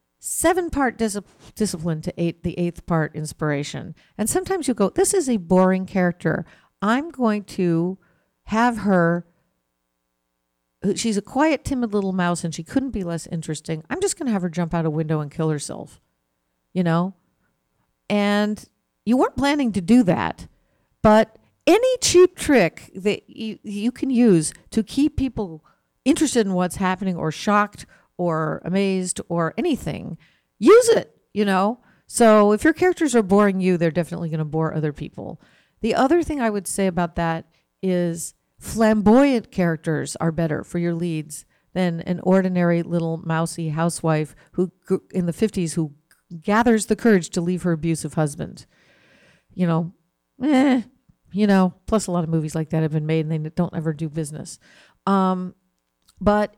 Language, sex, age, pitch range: English, female, 50-69, 165-220 Hz